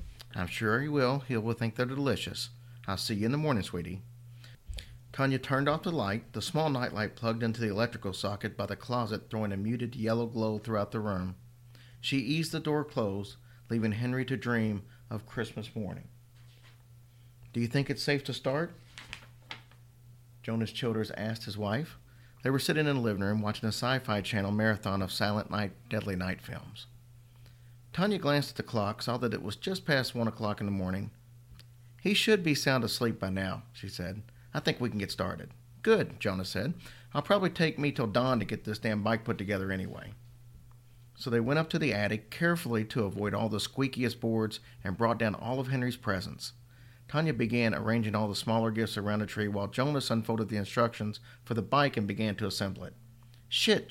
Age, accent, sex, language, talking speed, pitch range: 40-59, American, male, English, 195 wpm, 105-125 Hz